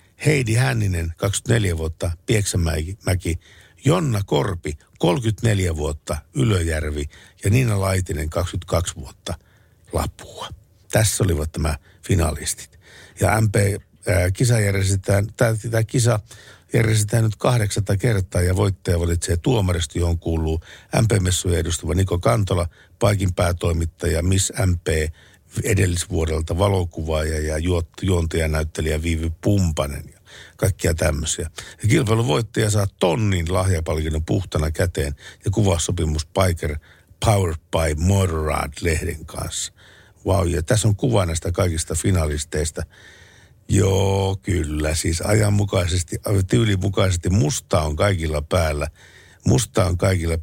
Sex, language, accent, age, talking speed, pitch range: male, Finnish, native, 60-79, 105 wpm, 80-105 Hz